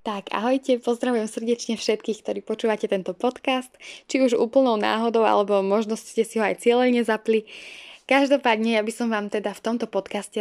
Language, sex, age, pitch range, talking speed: Slovak, female, 10-29, 195-230 Hz, 175 wpm